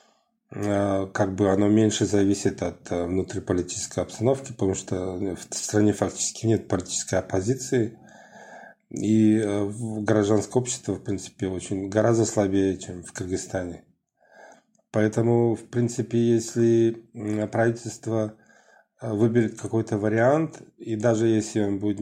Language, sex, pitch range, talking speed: Russian, male, 100-115 Hz, 110 wpm